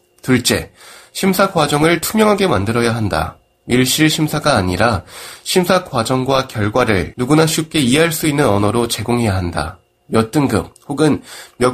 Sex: male